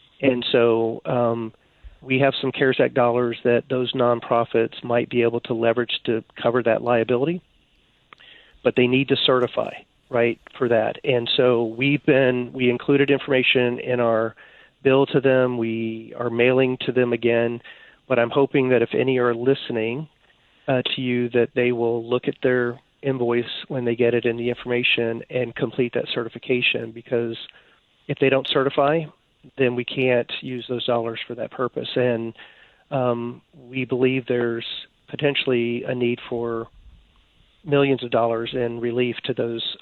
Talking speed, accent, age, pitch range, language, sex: 160 wpm, American, 40-59, 115-130 Hz, English, male